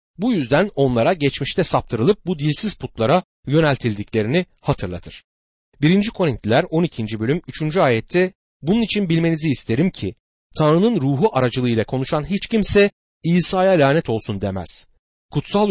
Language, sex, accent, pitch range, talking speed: Turkish, male, native, 110-165 Hz, 120 wpm